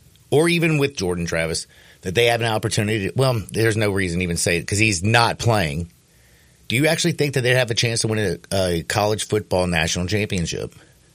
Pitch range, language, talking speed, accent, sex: 95-135 Hz, English, 215 wpm, American, male